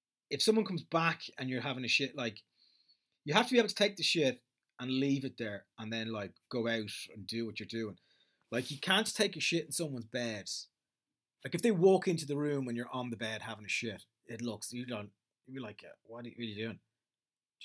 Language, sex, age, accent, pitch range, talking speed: English, male, 30-49, British, 110-155 Hz, 240 wpm